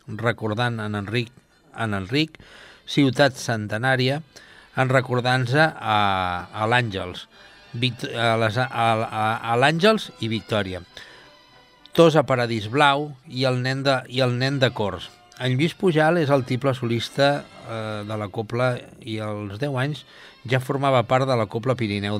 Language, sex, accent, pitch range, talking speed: Italian, male, Spanish, 110-135 Hz, 135 wpm